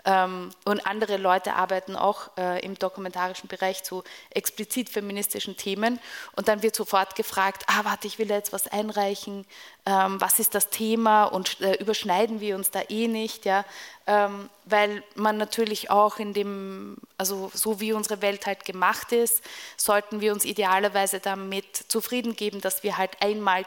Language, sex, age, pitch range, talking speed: English, female, 20-39, 195-220 Hz, 155 wpm